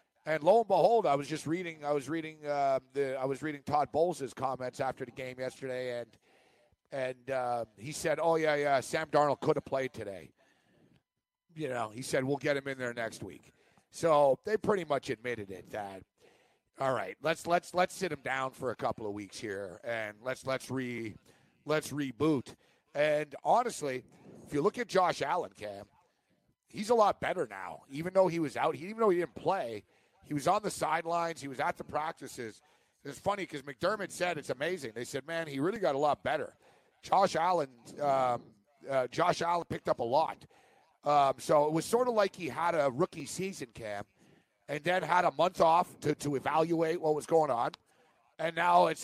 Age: 50-69